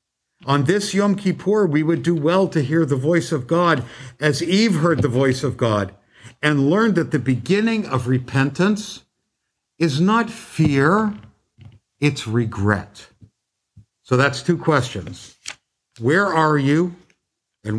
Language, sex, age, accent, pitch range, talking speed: English, male, 60-79, American, 120-170 Hz, 140 wpm